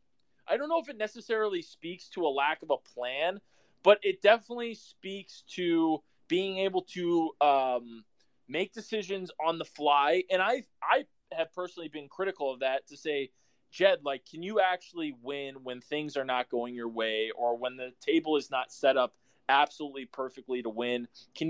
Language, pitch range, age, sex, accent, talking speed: English, 140-180 Hz, 20-39, male, American, 180 wpm